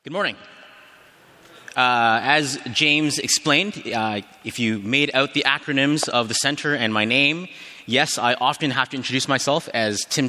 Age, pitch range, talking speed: 30-49, 120-180 Hz, 165 wpm